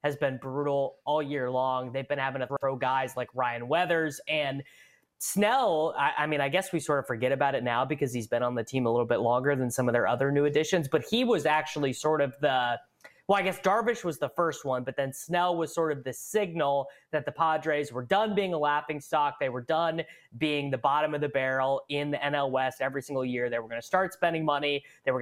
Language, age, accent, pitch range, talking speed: English, 20-39, American, 130-165 Hz, 245 wpm